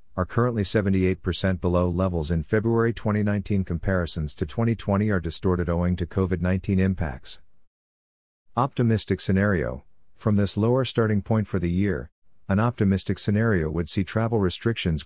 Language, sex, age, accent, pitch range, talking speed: English, male, 50-69, American, 85-105 Hz, 135 wpm